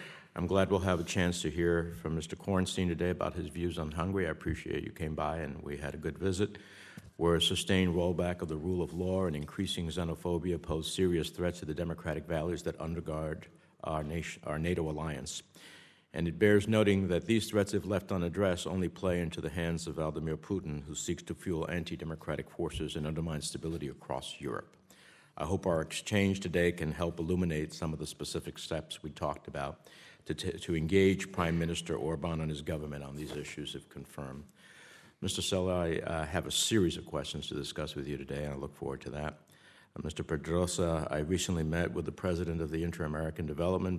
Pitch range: 75-90 Hz